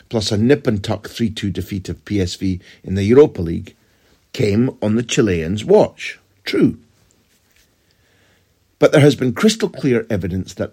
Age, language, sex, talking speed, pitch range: 60-79, English, male, 140 wpm, 90-115 Hz